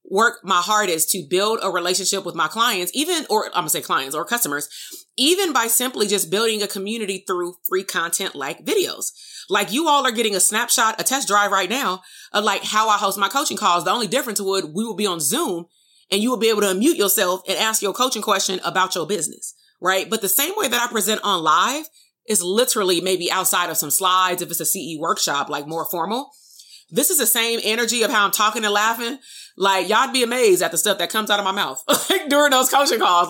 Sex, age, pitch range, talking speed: female, 30-49, 185-245 Hz, 230 wpm